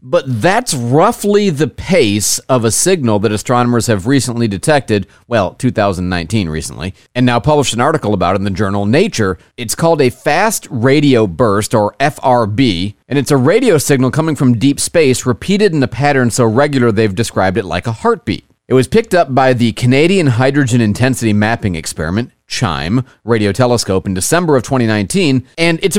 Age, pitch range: 40-59, 110-145 Hz